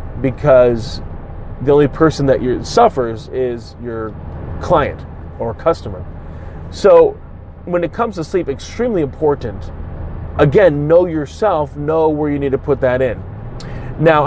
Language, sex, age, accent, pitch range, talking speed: English, male, 30-49, American, 125-160 Hz, 130 wpm